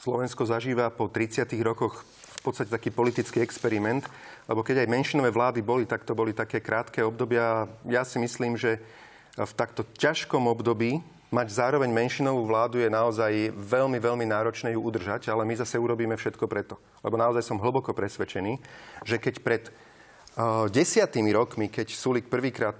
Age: 40-59